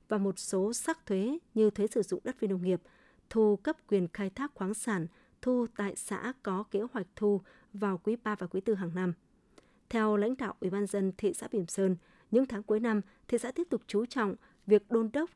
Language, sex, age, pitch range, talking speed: Vietnamese, female, 20-39, 190-235 Hz, 225 wpm